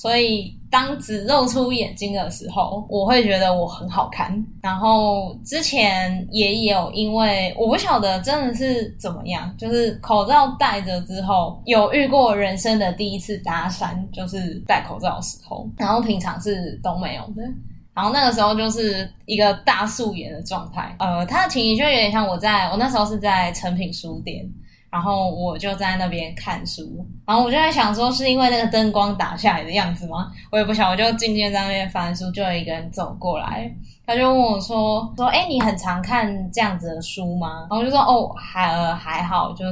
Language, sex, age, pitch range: Chinese, female, 10-29, 185-225 Hz